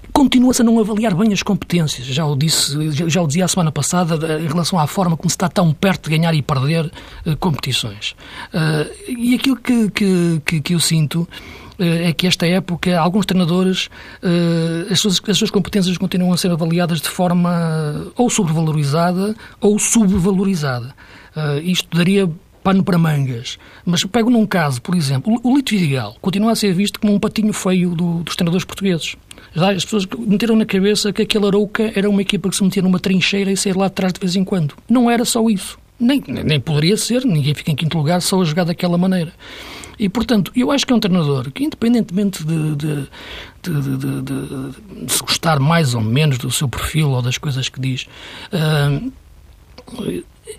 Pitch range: 155-205 Hz